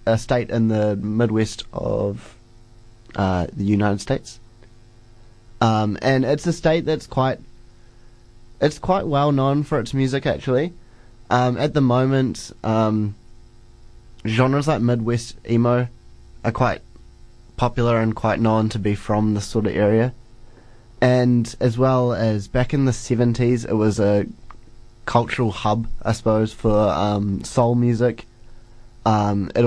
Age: 20-39